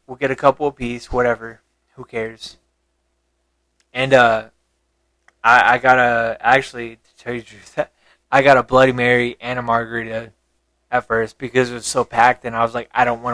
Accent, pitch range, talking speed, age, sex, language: American, 100-135 Hz, 190 wpm, 20-39, male, English